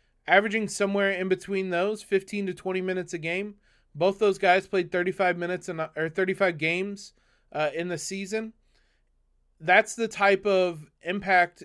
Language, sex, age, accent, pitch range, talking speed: English, male, 30-49, American, 160-195 Hz, 150 wpm